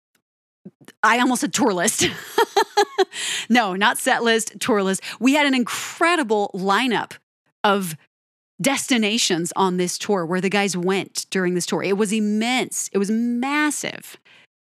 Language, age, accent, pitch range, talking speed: English, 30-49, American, 185-255 Hz, 140 wpm